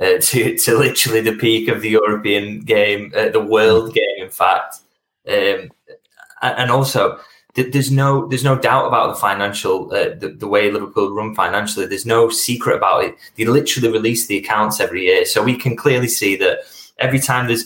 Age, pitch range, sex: 10-29, 100-135 Hz, male